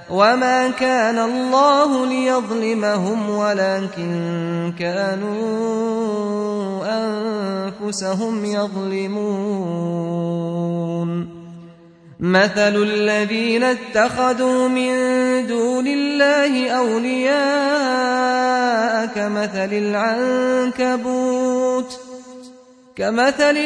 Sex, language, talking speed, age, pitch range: male, Arabic, 45 wpm, 30-49, 190-250 Hz